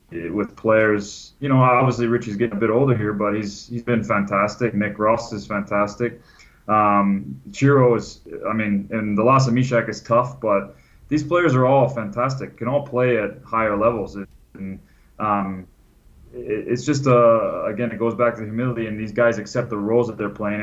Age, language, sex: 20-39, English, male